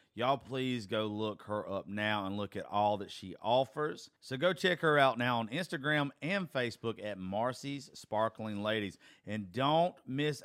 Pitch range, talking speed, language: 100-140 Hz, 180 wpm, English